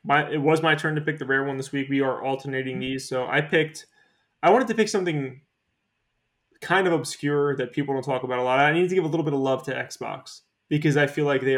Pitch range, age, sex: 130-150 Hz, 20-39, male